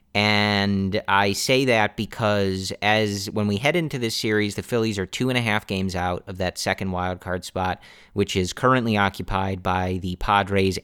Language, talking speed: English, 190 wpm